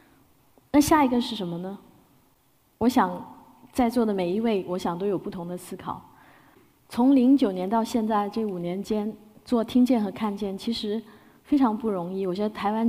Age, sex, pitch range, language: 20-39, female, 195-260 Hz, Chinese